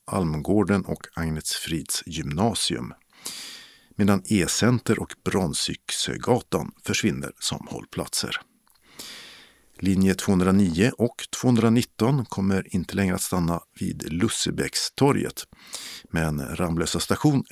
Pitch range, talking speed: 90-115 Hz, 90 wpm